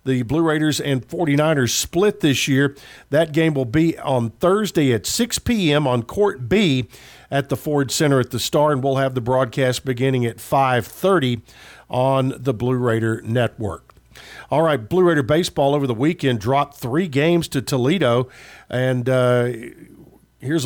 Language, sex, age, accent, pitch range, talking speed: English, male, 50-69, American, 130-160 Hz, 160 wpm